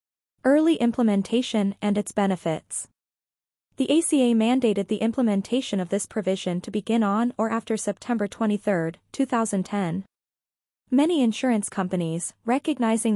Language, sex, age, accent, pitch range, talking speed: English, female, 20-39, American, 195-245 Hz, 115 wpm